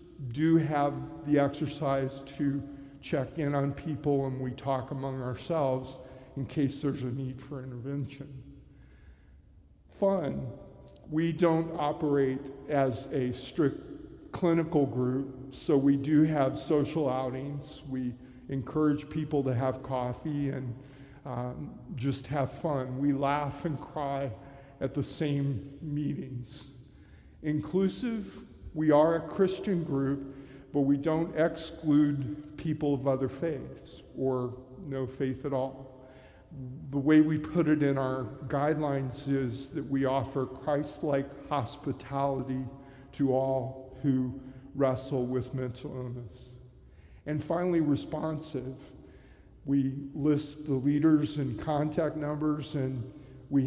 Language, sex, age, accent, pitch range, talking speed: English, male, 50-69, American, 130-150 Hz, 120 wpm